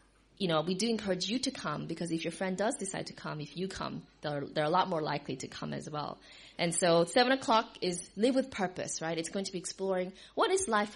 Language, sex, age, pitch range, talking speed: English, female, 20-39, 165-225 Hz, 250 wpm